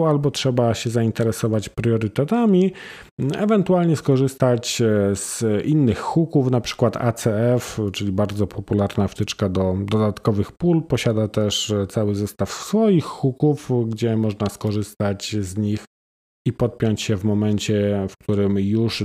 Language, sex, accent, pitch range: Polish, male, native, 100-120 Hz